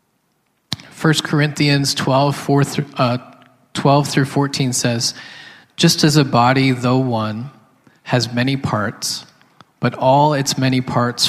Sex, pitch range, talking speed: male, 115-140 Hz, 115 wpm